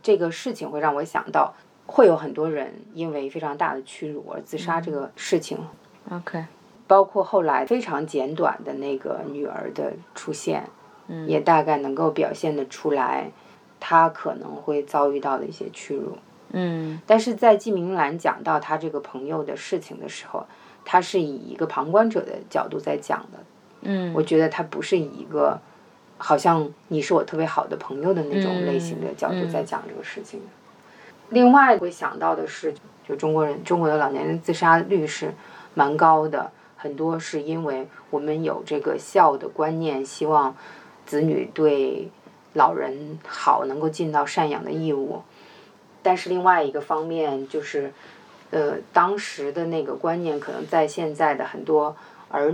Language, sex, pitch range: Chinese, female, 150-190 Hz